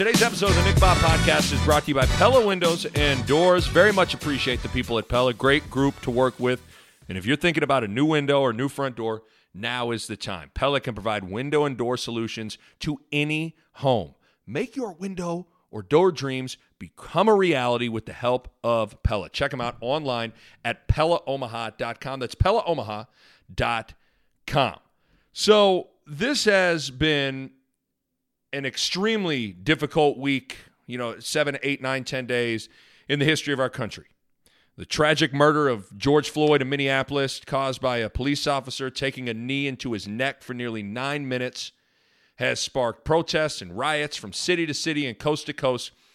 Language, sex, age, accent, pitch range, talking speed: English, male, 40-59, American, 120-150 Hz, 175 wpm